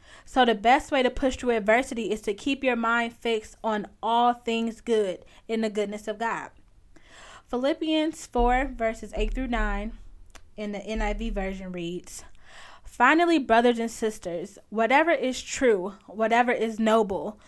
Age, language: 10-29, English